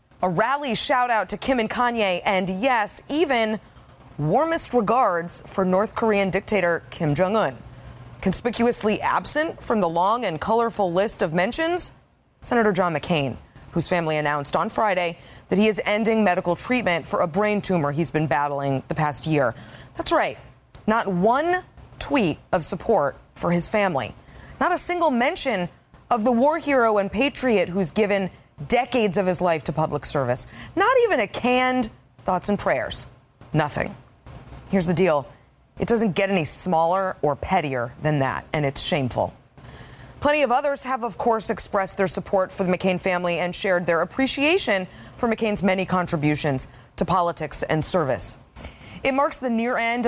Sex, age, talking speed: female, 20-39, 160 wpm